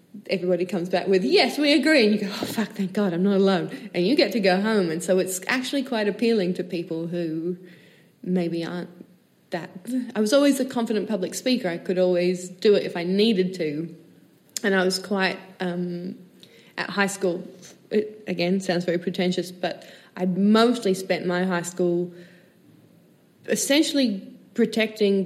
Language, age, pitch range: English, 20-39, 170-205 Hz